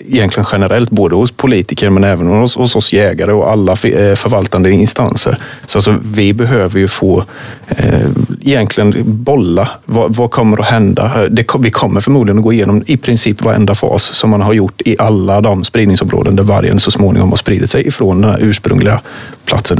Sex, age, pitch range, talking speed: male, 30-49, 100-120 Hz, 180 wpm